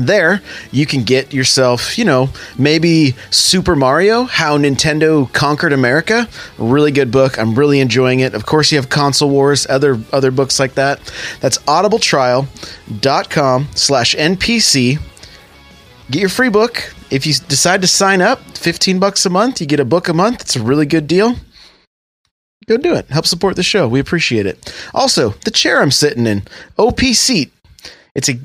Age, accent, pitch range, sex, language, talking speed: 30-49, American, 135-195 Hz, male, English, 170 wpm